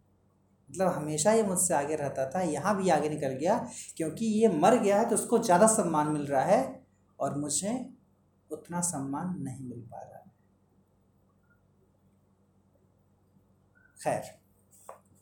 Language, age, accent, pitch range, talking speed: Hindi, 30-49, native, 155-200 Hz, 135 wpm